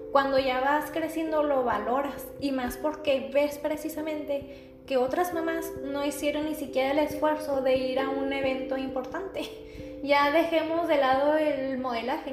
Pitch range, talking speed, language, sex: 245-290 Hz, 155 wpm, Spanish, female